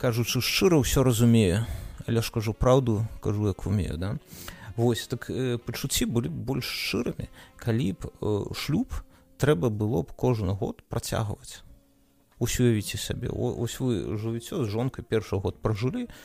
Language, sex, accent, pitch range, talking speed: Russian, male, native, 105-135 Hz, 150 wpm